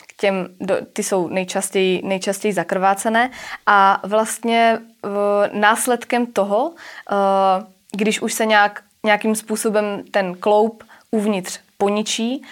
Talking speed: 95 wpm